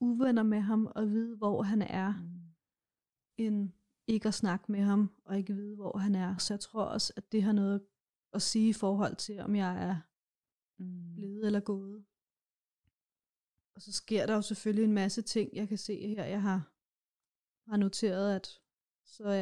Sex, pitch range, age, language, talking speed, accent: female, 195-215 Hz, 30-49, Danish, 180 wpm, native